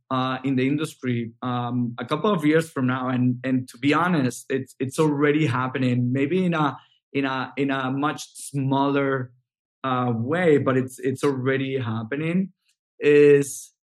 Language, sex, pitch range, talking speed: English, male, 125-150 Hz, 160 wpm